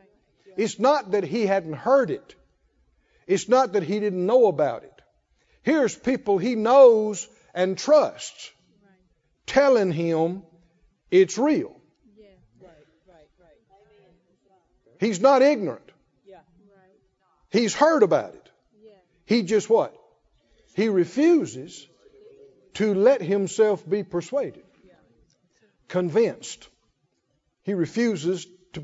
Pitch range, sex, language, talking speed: 195-280 Hz, male, English, 95 wpm